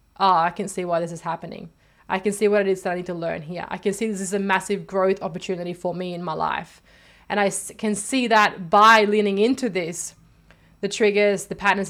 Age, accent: 20-39, Australian